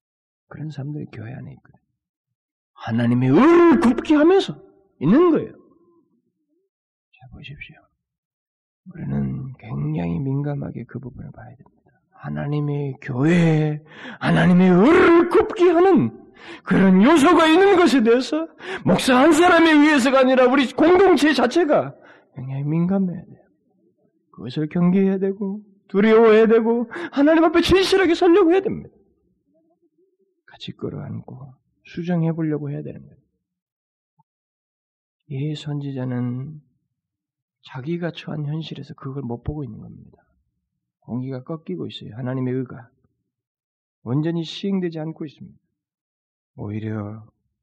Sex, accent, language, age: male, native, Korean, 40-59